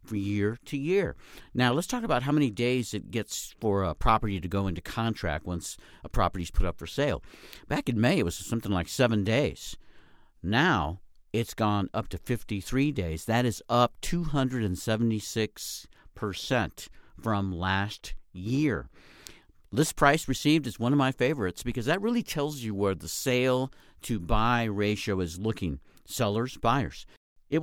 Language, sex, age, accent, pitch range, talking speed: English, male, 50-69, American, 100-140 Hz, 160 wpm